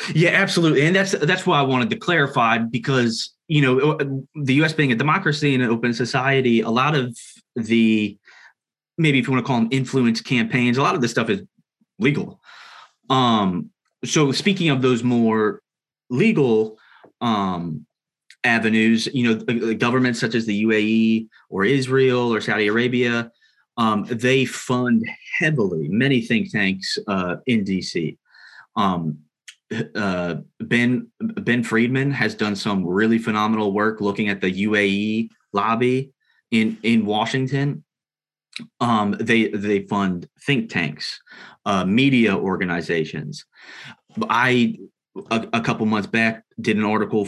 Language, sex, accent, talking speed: English, male, American, 140 wpm